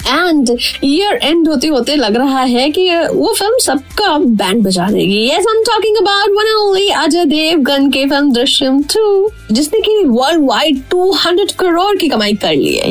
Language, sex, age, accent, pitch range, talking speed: Hindi, female, 20-39, native, 255-365 Hz, 160 wpm